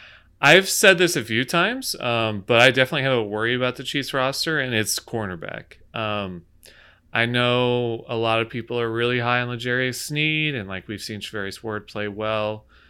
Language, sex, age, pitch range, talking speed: English, male, 30-49, 105-125 Hz, 190 wpm